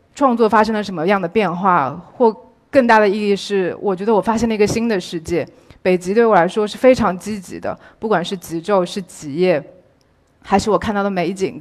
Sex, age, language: female, 20-39, Chinese